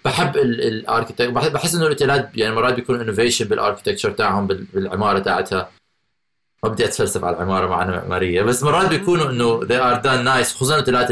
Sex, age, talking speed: male, 30-49, 155 wpm